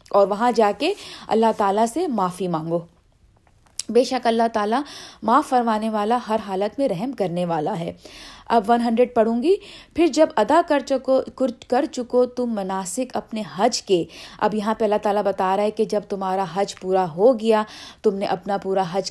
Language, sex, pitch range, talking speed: Urdu, female, 195-255 Hz, 185 wpm